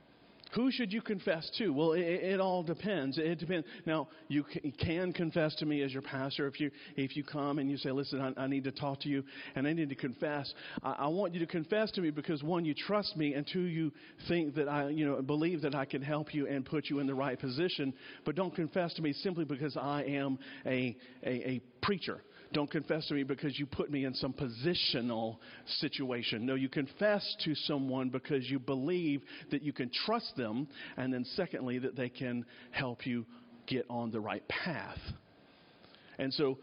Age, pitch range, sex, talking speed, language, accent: 50-69, 135-170 Hz, male, 210 wpm, English, American